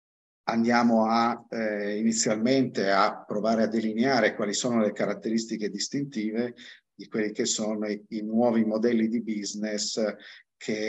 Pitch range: 105-115 Hz